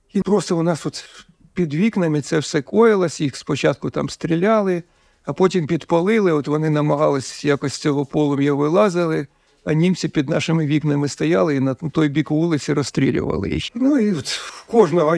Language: Ukrainian